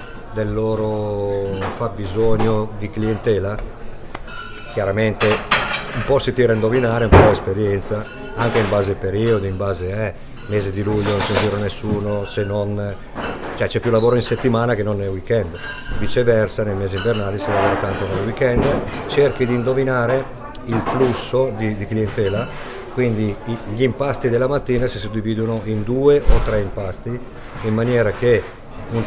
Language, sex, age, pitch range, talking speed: Italian, male, 50-69, 105-120 Hz, 155 wpm